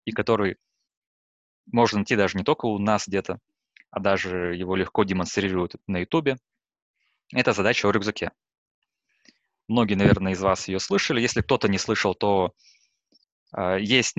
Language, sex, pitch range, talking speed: Russian, male, 95-110 Hz, 140 wpm